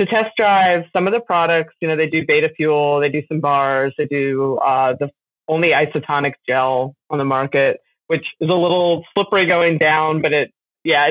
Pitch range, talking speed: 150-205 Hz, 200 wpm